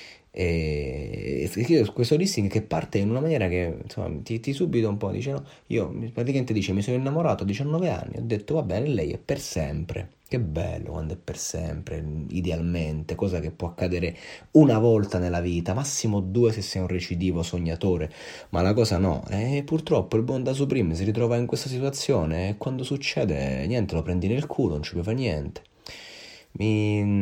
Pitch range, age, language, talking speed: 85-110 Hz, 30-49, Italian, 185 wpm